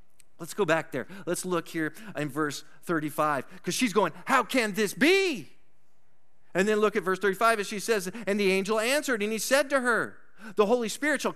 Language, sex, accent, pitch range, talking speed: English, male, American, 165-245 Hz, 205 wpm